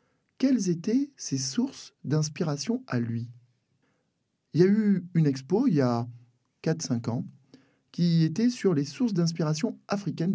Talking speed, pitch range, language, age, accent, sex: 145 wpm, 130-200 Hz, French, 50-69, French, male